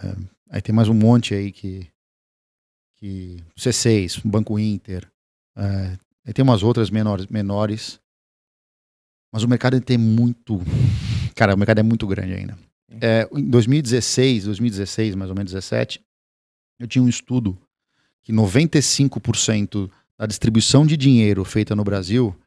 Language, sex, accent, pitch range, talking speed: Portuguese, male, Brazilian, 95-120 Hz, 140 wpm